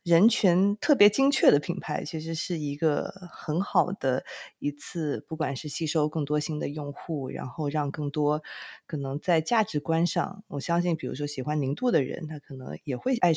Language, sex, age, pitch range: Chinese, female, 20-39, 145-175 Hz